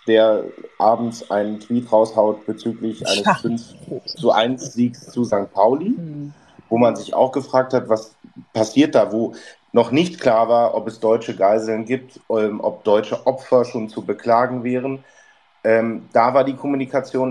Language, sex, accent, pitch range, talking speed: German, male, German, 110-135 Hz, 145 wpm